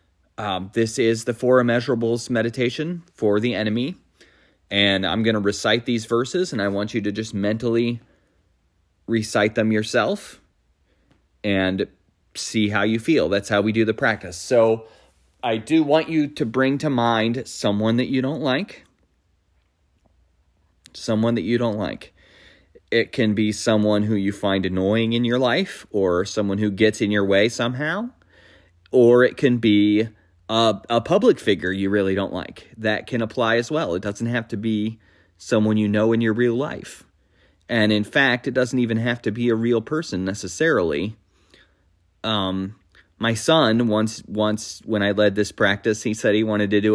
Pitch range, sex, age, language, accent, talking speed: 95-120 Hz, male, 30-49, English, American, 170 wpm